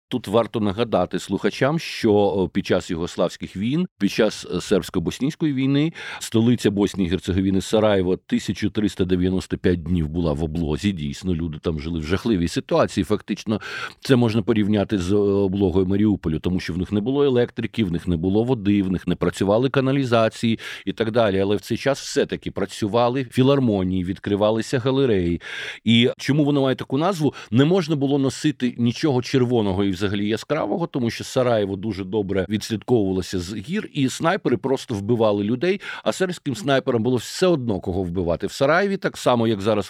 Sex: male